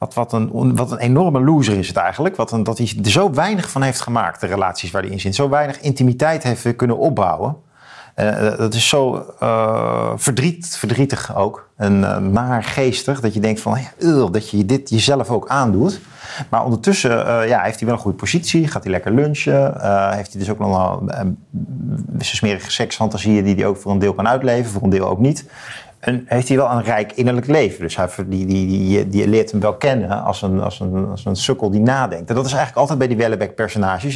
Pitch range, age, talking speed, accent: 100-130 Hz, 40-59, 225 wpm, Dutch